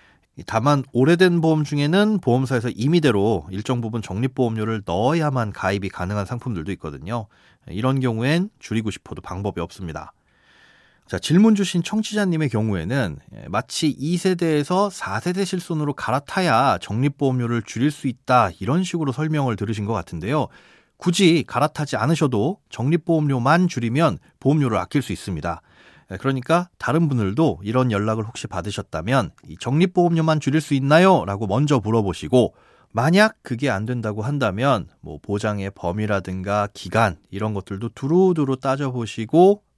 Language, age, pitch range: Korean, 30-49, 105-160 Hz